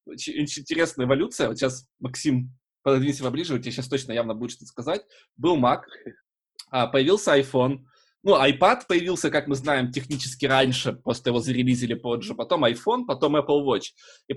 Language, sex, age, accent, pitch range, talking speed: Russian, male, 20-39, native, 125-165 Hz, 160 wpm